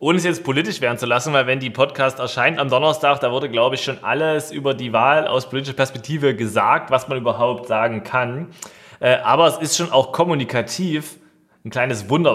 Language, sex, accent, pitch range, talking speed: German, male, German, 135-170 Hz, 200 wpm